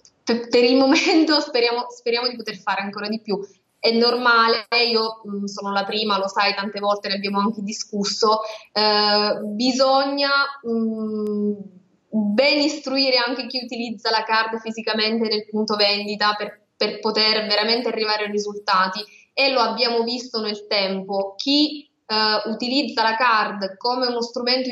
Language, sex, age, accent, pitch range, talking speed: Italian, female, 20-39, native, 205-245 Hz, 145 wpm